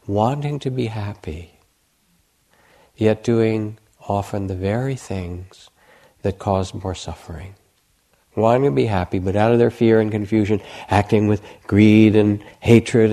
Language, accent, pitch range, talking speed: English, American, 95-115 Hz, 135 wpm